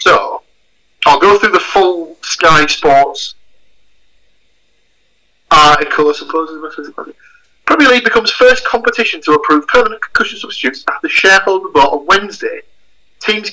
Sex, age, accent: male, 30-49, British